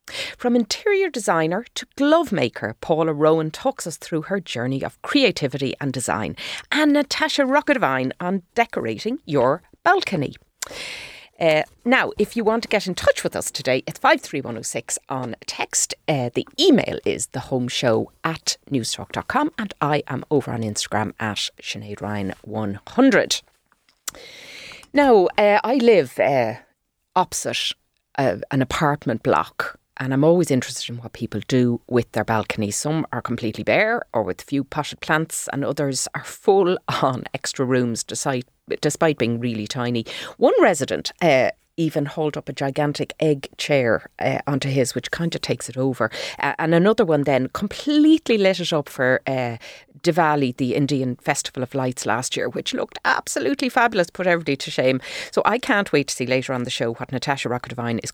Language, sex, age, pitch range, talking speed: English, female, 40-59, 125-190 Hz, 160 wpm